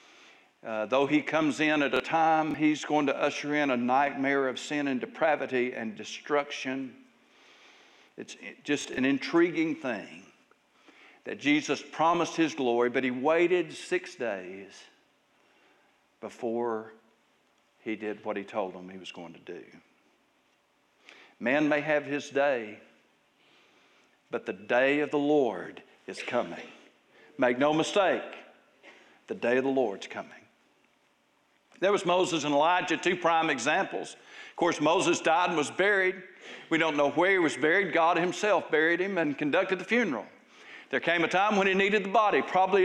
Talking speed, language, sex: 155 wpm, English, male